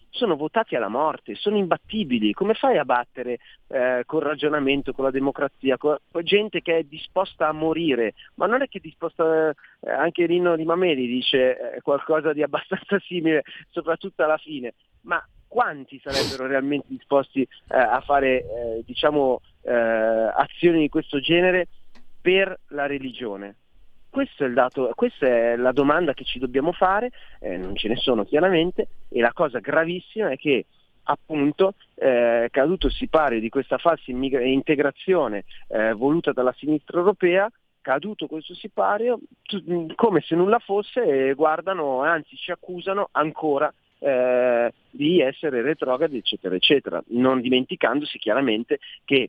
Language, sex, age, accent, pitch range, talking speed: Italian, male, 30-49, native, 130-175 Hz, 150 wpm